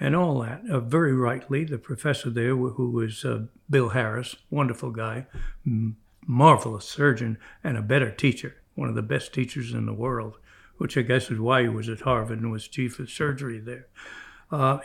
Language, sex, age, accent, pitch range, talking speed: English, male, 60-79, American, 120-145 Hz, 185 wpm